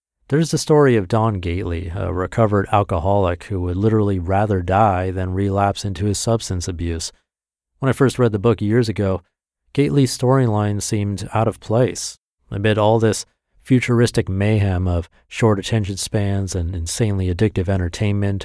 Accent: American